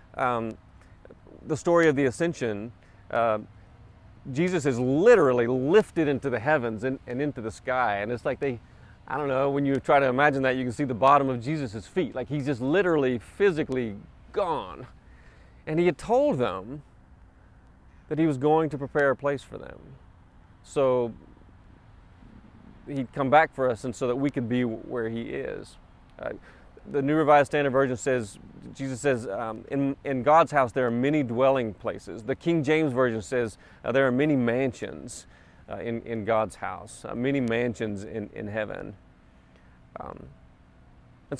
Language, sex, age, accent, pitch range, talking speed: English, male, 30-49, American, 110-140 Hz, 170 wpm